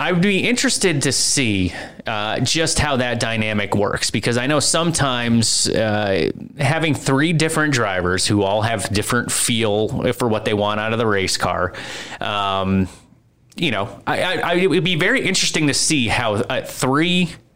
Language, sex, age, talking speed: English, male, 30-49, 175 wpm